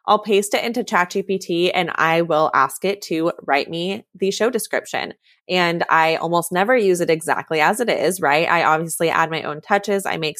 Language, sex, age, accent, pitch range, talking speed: English, female, 20-39, American, 165-205 Hz, 200 wpm